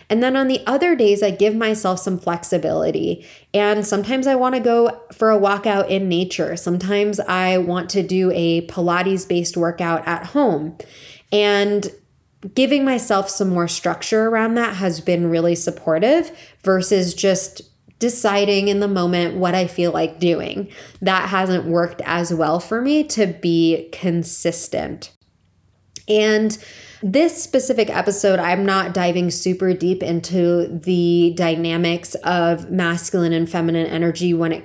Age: 20-39